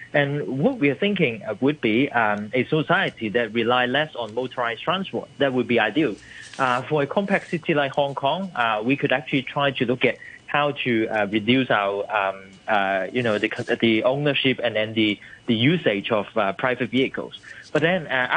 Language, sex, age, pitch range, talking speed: English, male, 20-39, 120-155 Hz, 200 wpm